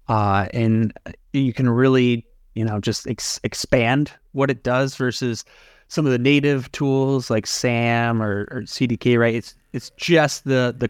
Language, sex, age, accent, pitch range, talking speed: English, male, 20-39, American, 110-130 Hz, 165 wpm